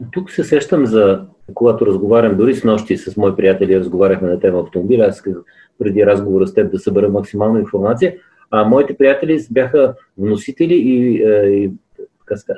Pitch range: 95-135 Hz